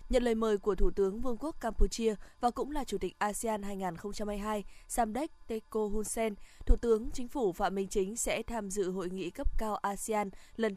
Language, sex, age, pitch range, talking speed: Vietnamese, female, 20-39, 195-230 Hz, 200 wpm